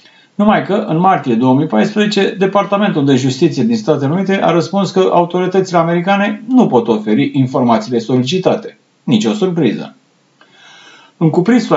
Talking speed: 135 wpm